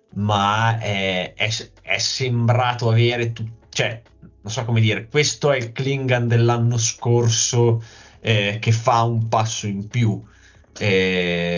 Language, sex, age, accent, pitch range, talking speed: Italian, male, 20-39, native, 110-120 Hz, 135 wpm